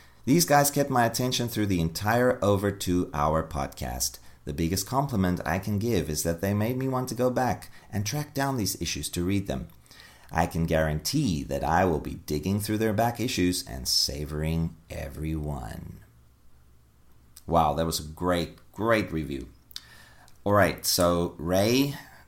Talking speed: 160 wpm